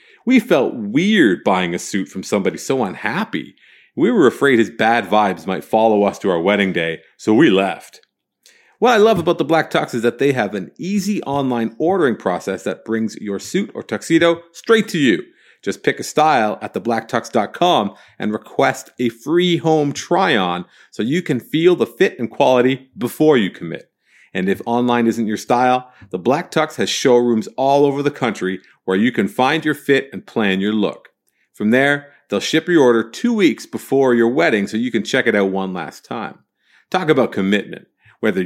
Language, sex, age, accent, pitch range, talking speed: English, male, 40-59, American, 105-150 Hz, 190 wpm